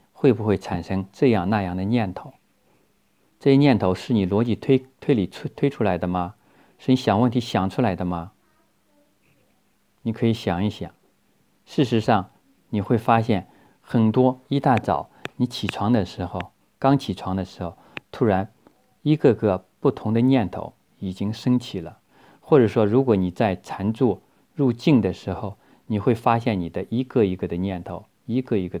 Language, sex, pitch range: Chinese, male, 95-120 Hz